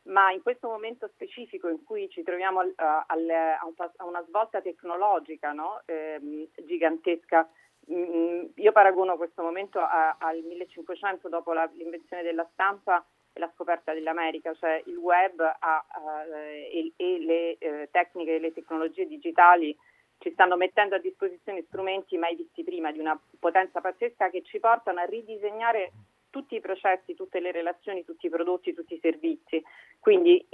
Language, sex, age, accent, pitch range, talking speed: Italian, female, 40-59, native, 165-195 Hz, 155 wpm